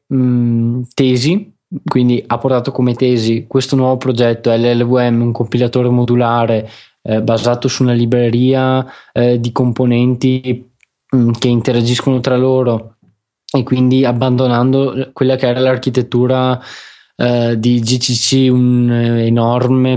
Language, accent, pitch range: Italian, native, 120-140 Hz